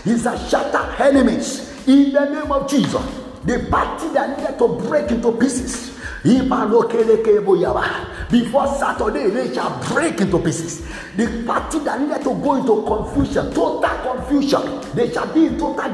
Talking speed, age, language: 145 wpm, 50-69, English